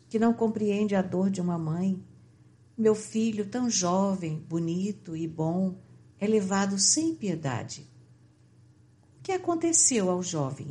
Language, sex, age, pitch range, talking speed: Portuguese, female, 60-79, 150-215 Hz, 135 wpm